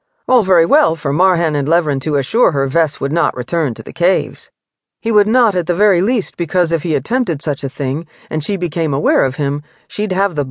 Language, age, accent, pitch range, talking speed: English, 50-69, American, 150-195 Hz, 230 wpm